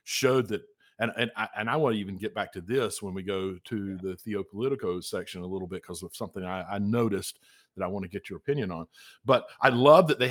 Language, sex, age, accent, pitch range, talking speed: English, male, 50-69, American, 100-140 Hz, 240 wpm